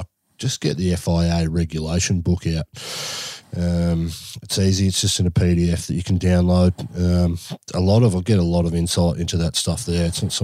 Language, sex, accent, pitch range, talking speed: English, male, Australian, 85-95 Hz, 205 wpm